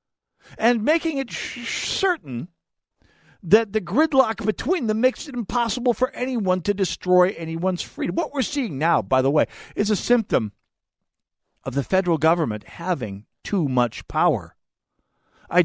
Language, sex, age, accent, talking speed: English, male, 50-69, American, 140 wpm